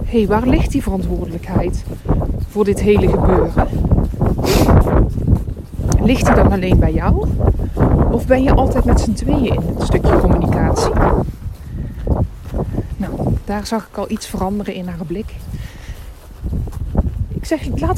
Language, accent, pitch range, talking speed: Dutch, Dutch, 190-230 Hz, 130 wpm